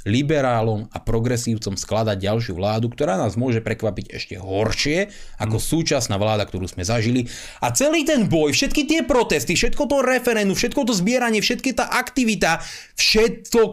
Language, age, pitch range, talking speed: Slovak, 30-49, 110-175 Hz, 155 wpm